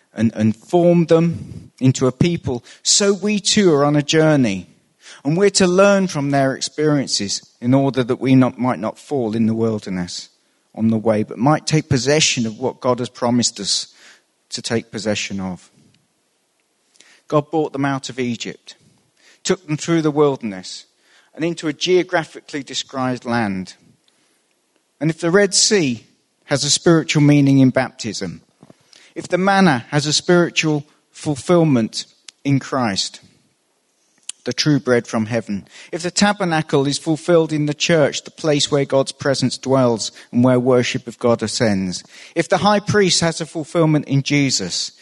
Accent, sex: British, male